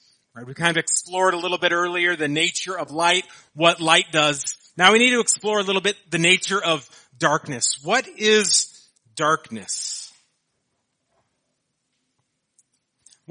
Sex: male